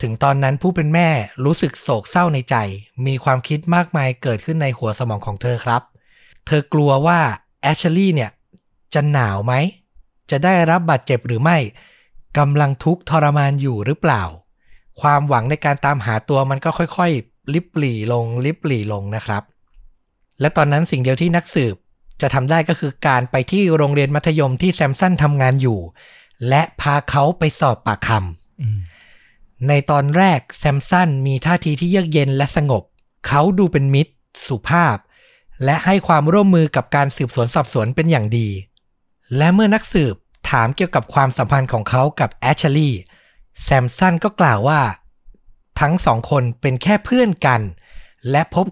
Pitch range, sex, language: 125-160 Hz, male, Thai